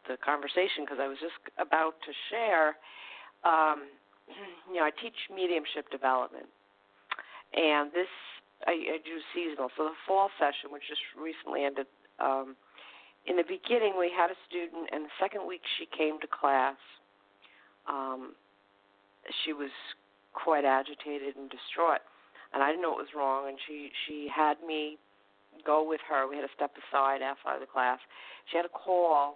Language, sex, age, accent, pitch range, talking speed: English, female, 50-69, American, 130-155 Hz, 165 wpm